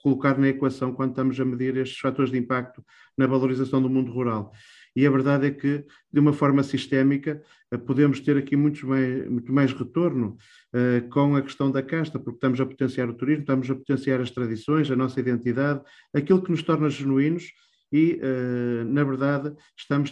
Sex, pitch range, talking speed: male, 125-140 Hz, 185 wpm